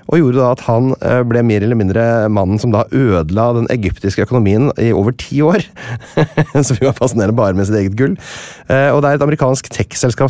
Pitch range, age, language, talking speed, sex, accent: 95-130 Hz, 30-49, English, 210 wpm, male, Swedish